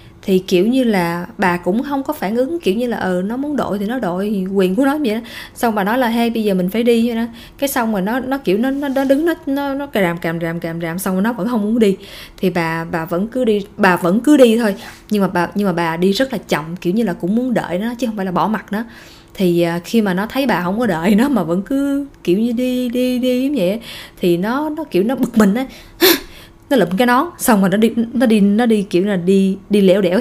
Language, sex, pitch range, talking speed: Vietnamese, female, 185-255 Hz, 285 wpm